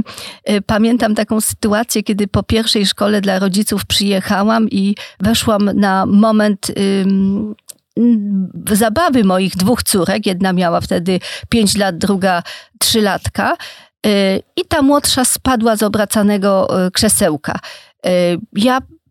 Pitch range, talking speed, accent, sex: 190-235 Hz, 105 wpm, native, female